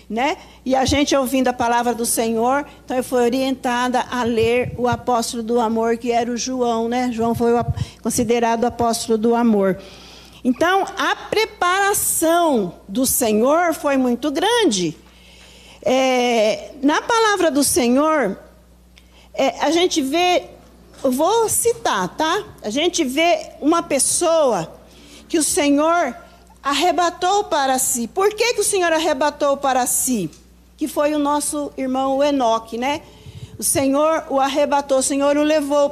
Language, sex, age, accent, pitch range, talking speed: Portuguese, female, 50-69, Brazilian, 240-320 Hz, 145 wpm